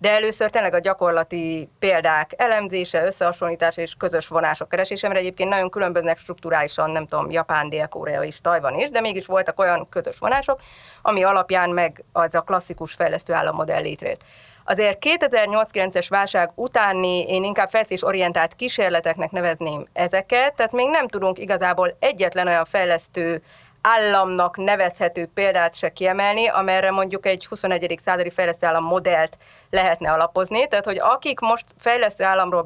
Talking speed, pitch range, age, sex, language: 140 wpm, 170-205 Hz, 30-49, female, Hungarian